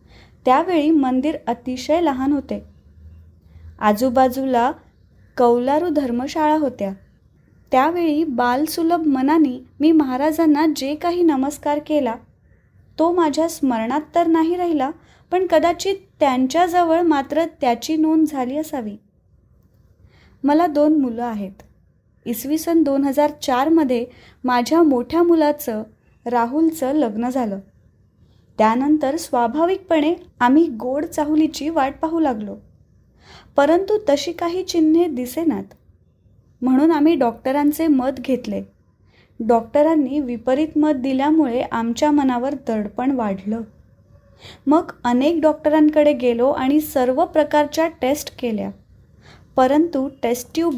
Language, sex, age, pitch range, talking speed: Marathi, female, 20-39, 245-315 Hz, 100 wpm